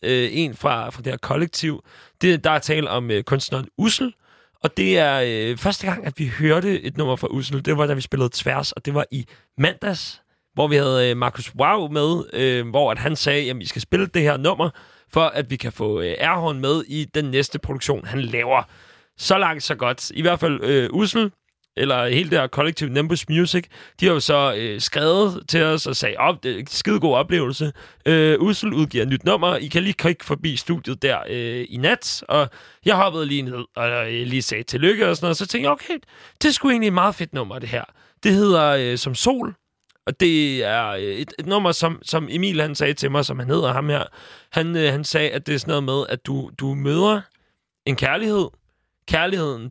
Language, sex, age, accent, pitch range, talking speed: Danish, male, 30-49, native, 130-170 Hz, 220 wpm